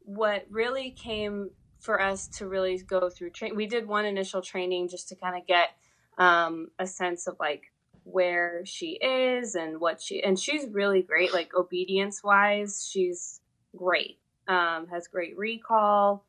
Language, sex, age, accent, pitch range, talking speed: English, female, 20-39, American, 170-195 Hz, 160 wpm